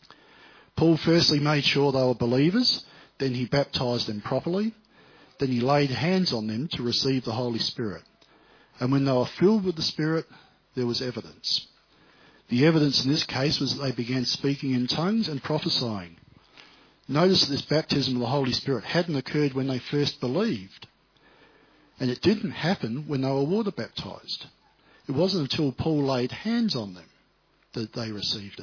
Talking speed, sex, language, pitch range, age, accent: 170 wpm, male, English, 120-155 Hz, 50-69, Australian